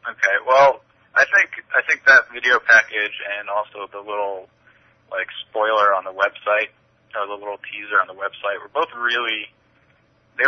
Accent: American